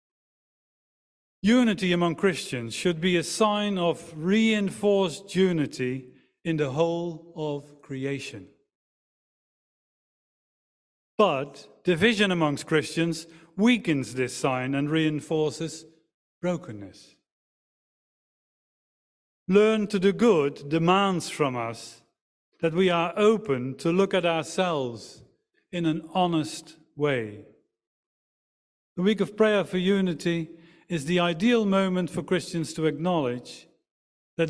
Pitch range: 135-175 Hz